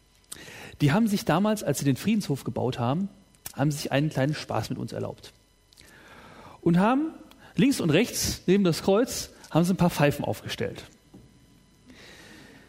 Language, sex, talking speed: German, male, 140 wpm